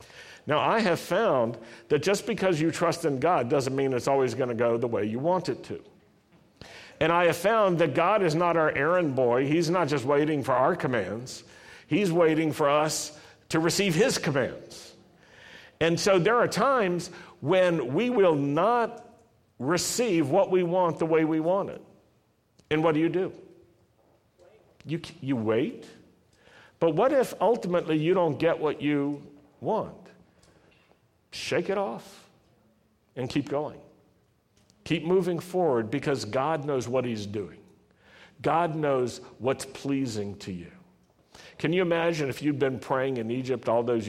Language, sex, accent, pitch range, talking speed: English, male, American, 130-175 Hz, 160 wpm